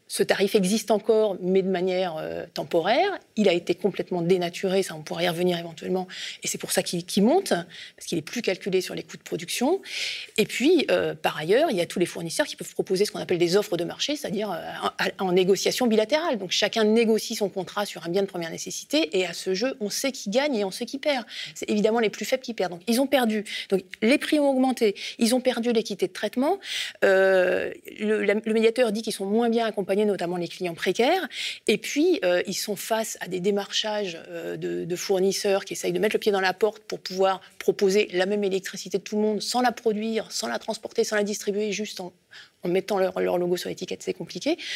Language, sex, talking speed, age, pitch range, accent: French, female, 235 wpm, 30-49, 185-230 Hz, French